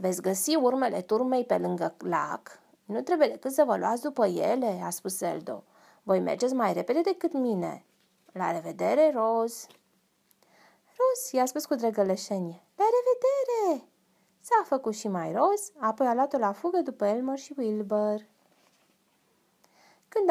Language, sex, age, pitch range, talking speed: Romanian, female, 20-39, 190-290 Hz, 145 wpm